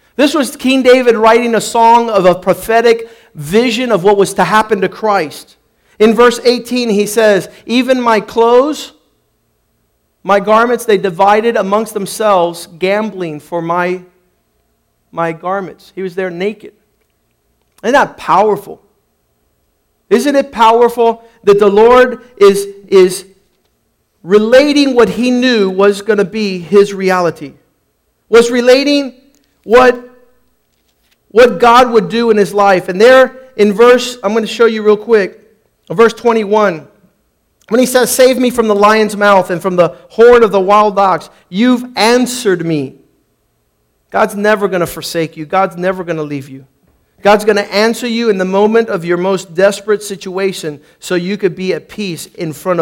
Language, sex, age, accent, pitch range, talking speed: English, male, 50-69, American, 185-235 Hz, 155 wpm